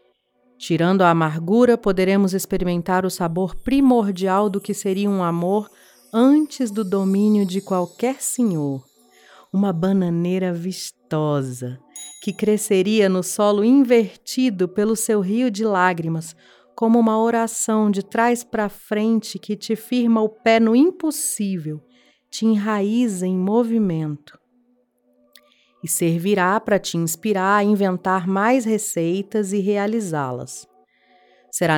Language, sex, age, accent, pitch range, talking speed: Portuguese, female, 40-59, Brazilian, 170-220 Hz, 115 wpm